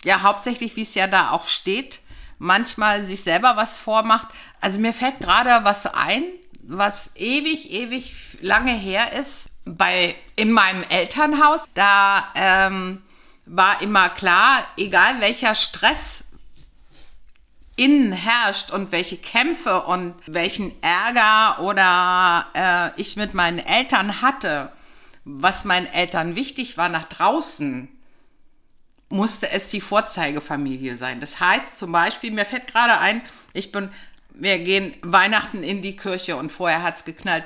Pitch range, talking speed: 185-250 Hz, 135 wpm